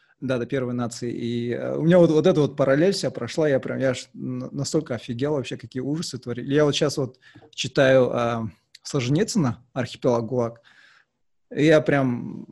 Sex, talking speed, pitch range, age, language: male, 165 wpm, 120-145 Hz, 20-39, Russian